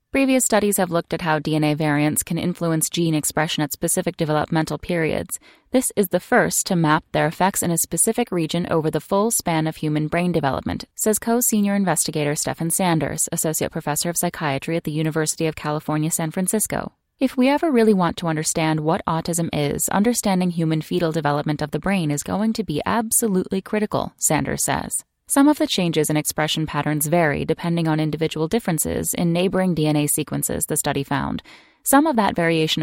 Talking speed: 185 wpm